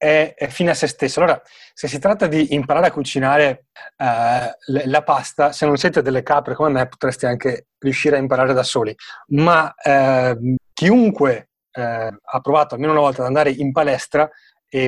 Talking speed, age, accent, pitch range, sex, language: 180 wpm, 30-49, native, 135-160 Hz, male, Italian